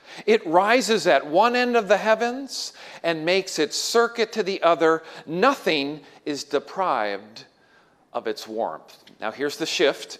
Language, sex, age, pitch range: English, male, 40-59, 175-225 Hz